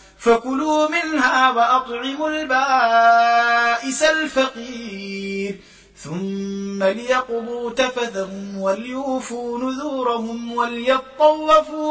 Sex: male